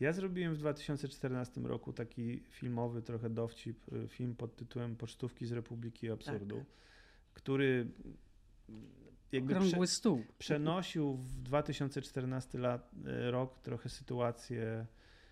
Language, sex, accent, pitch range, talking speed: Polish, male, native, 115-140 Hz, 95 wpm